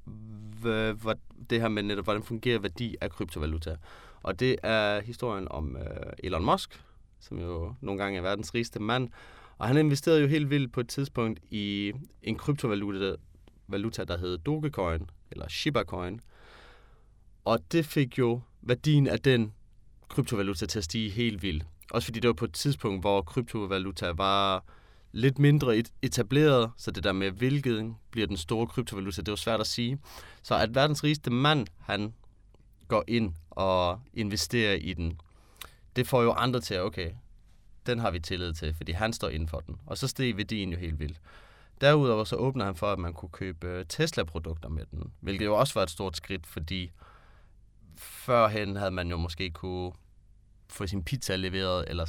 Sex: male